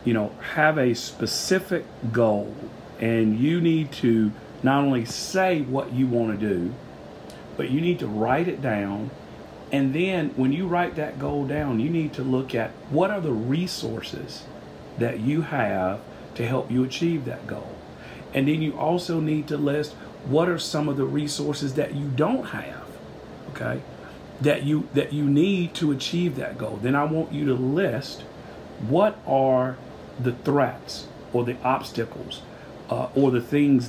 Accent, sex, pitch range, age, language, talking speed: American, male, 115-150 Hz, 40-59, English, 170 wpm